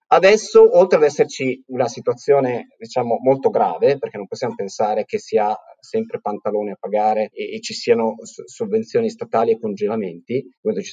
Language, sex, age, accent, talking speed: Italian, male, 30-49, native, 165 wpm